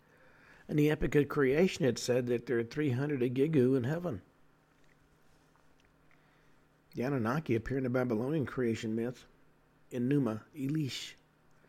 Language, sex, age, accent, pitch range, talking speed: English, male, 50-69, American, 120-145 Hz, 130 wpm